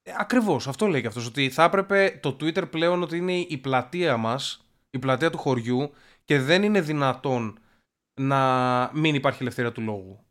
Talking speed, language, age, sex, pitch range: 180 wpm, Greek, 20-39, male, 125-180 Hz